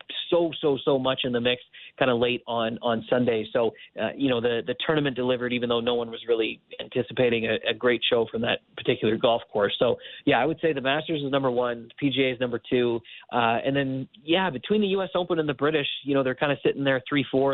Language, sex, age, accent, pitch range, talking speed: English, male, 30-49, American, 120-140 Hz, 245 wpm